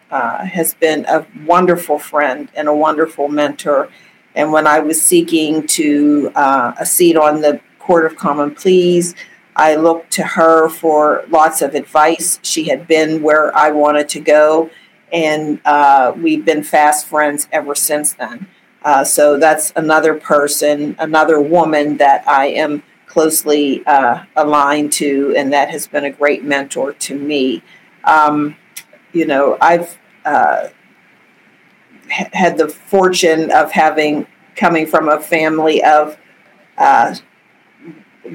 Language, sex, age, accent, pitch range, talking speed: English, female, 50-69, American, 150-165 Hz, 140 wpm